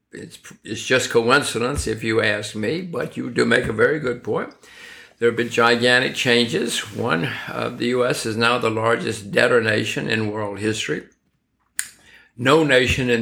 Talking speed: 170 wpm